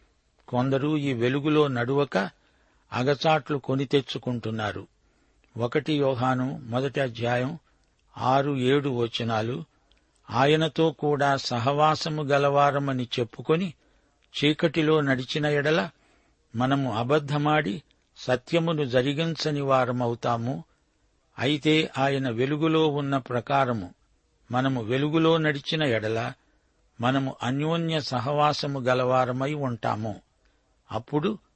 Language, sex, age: Telugu, male, 60-79